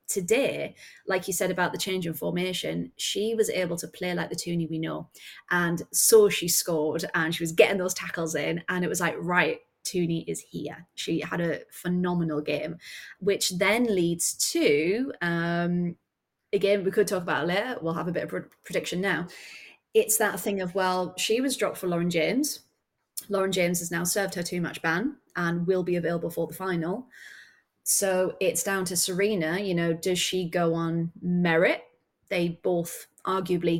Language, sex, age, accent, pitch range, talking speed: English, female, 20-39, British, 165-205 Hz, 185 wpm